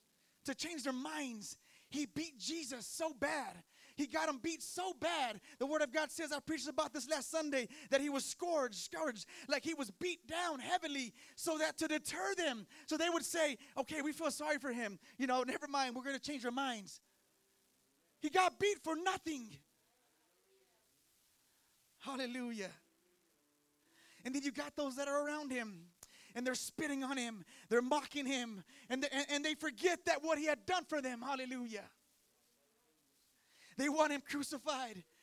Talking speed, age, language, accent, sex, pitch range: 170 wpm, 30-49, English, American, male, 250-310 Hz